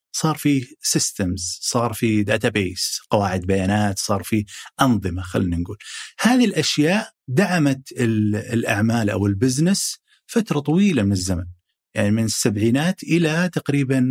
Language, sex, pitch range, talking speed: Arabic, male, 105-165 Hz, 125 wpm